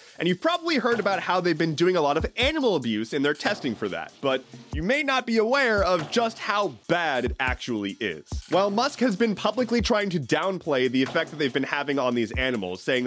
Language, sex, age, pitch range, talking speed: English, male, 30-49, 145-215 Hz, 230 wpm